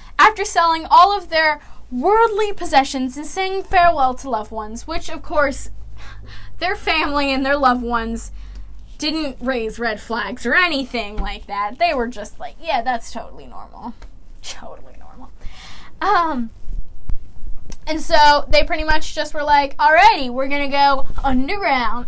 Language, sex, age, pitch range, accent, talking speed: English, female, 10-29, 245-320 Hz, American, 145 wpm